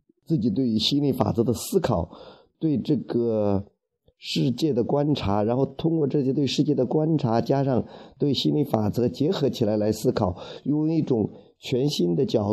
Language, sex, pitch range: Chinese, male, 100-130 Hz